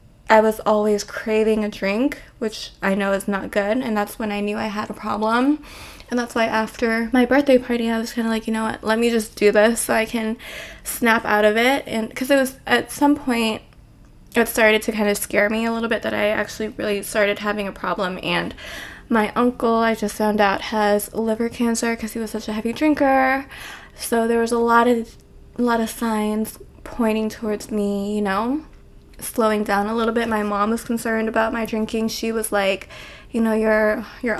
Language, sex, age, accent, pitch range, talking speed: English, female, 20-39, American, 215-235 Hz, 215 wpm